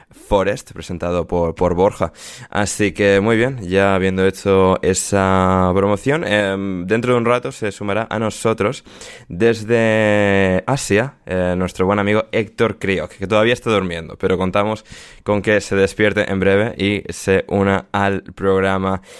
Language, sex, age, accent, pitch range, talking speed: Spanish, male, 20-39, Spanish, 90-110 Hz, 150 wpm